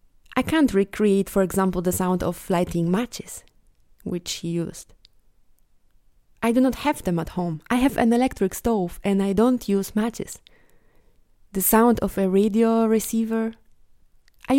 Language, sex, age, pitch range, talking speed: English, female, 20-39, 175-220 Hz, 150 wpm